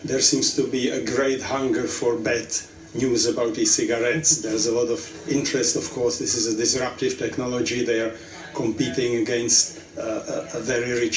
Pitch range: 120-145 Hz